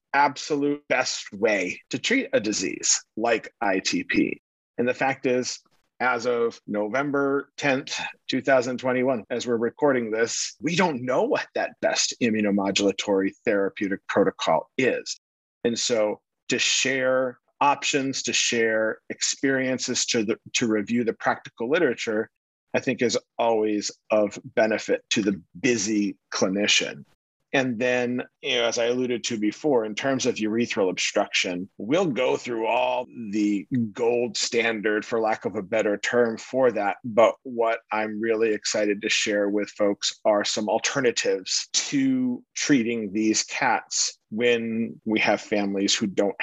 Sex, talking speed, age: male, 135 wpm, 40-59